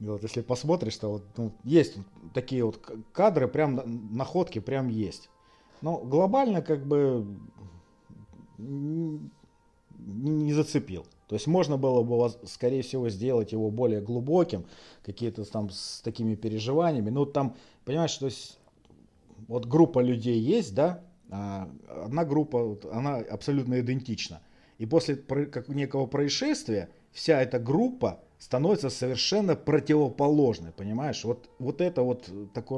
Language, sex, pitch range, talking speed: Russian, male, 110-145 Hz, 130 wpm